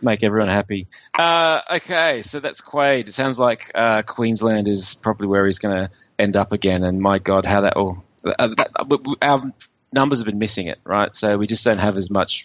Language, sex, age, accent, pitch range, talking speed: English, male, 30-49, Australian, 100-130 Hz, 205 wpm